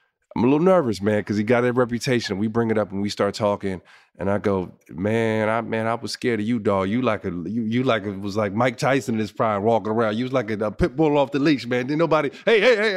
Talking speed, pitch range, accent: 290 wpm, 105-140 Hz, American